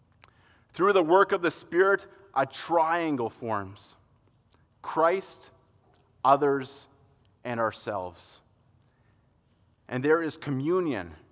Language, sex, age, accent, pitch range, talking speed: English, male, 30-49, American, 120-185 Hz, 90 wpm